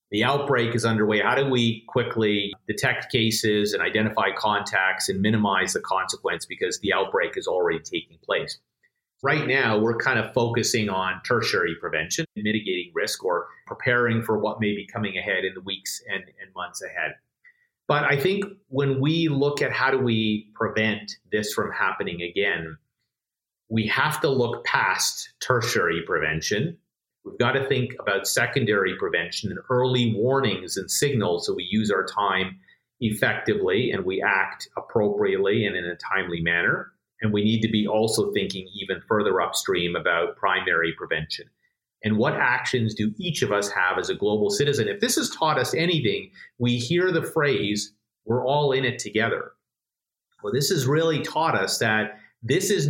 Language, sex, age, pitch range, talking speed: English, male, 40-59, 105-140 Hz, 170 wpm